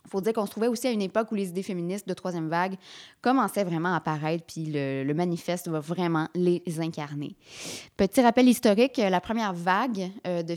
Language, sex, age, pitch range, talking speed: French, female, 20-39, 170-210 Hz, 210 wpm